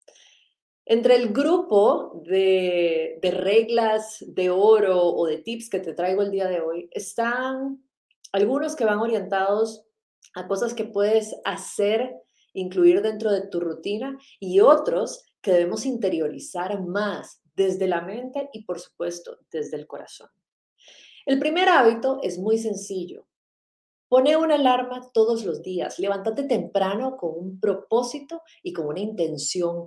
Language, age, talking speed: Spanish, 30-49, 140 wpm